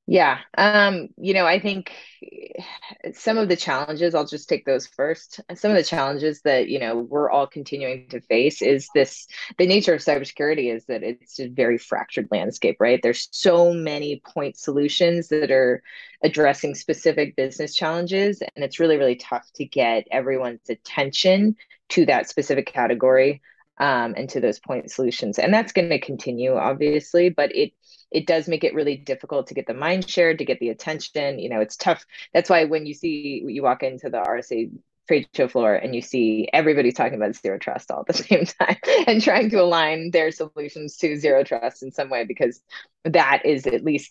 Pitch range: 130-175 Hz